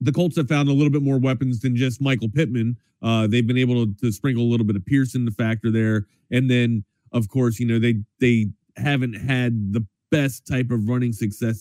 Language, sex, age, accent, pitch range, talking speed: English, male, 30-49, American, 95-115 Hz, 235 wpm